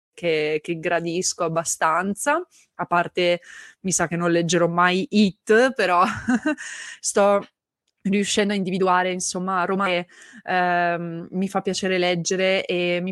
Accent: native